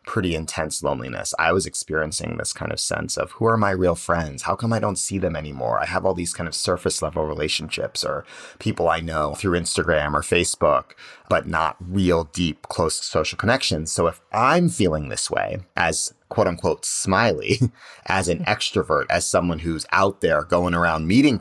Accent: American